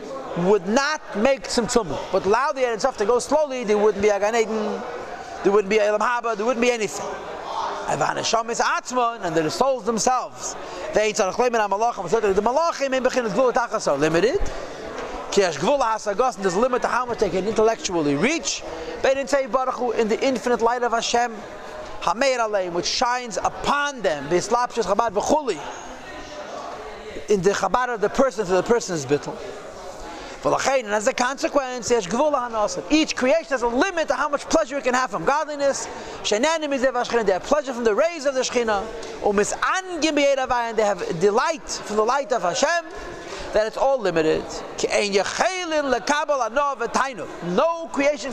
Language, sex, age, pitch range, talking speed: English, male, 40-59, 215-275 Hz, 160 wpm